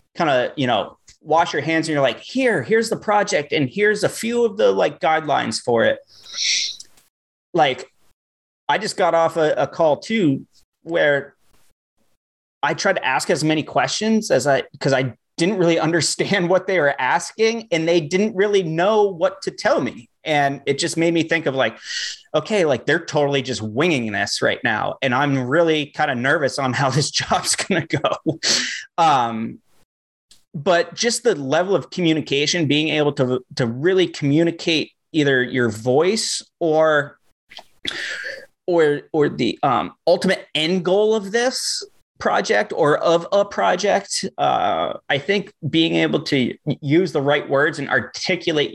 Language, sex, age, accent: English, male, 30-49, American